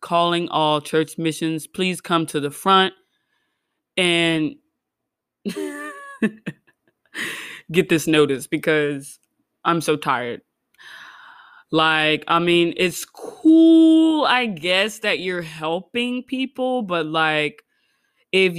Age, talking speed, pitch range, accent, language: 20-39, 100 wpm, 170-260 Hz, American, English